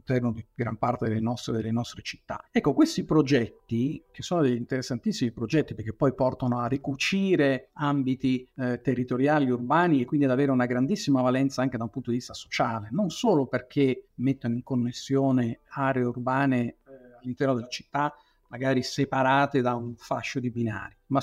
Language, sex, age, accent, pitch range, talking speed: Italian, male, 50-69, native, 120-150 Hz, 165 wpm